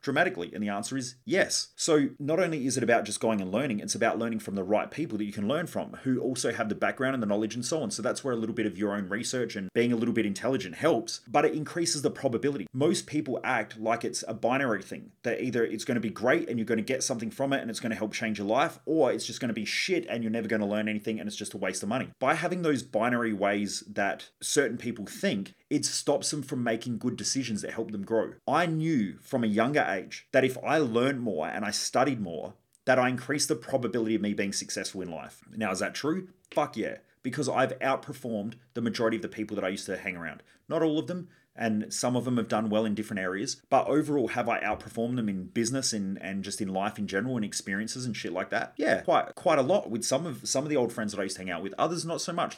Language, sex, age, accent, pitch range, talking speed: English, male, 30-49, Australian, 105-135 Hz, 270 wpm